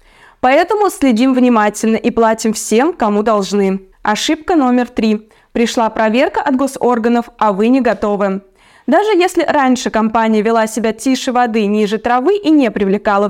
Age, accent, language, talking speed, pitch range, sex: 20-39, native, Russian, 145 wpm, 215-290 Hz, female